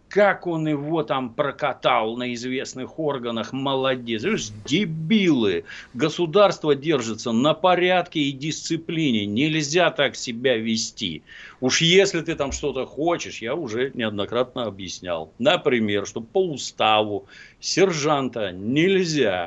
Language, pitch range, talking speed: Russian, 110-155 Hz, 110 wpm